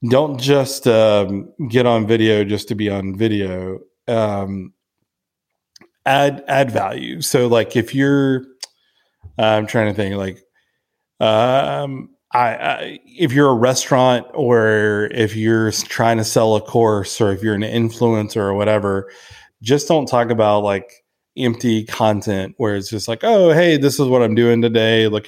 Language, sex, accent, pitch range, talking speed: English, male, American, 105-130 Hz, 155 wpm